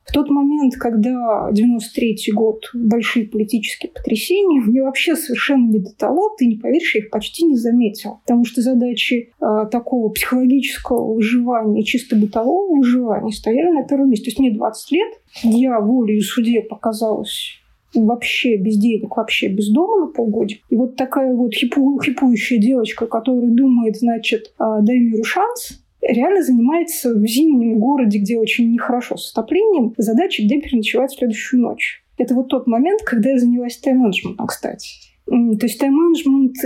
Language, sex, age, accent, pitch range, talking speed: Russian, female, 20-39, native, 225-270 Hz, 155 wpm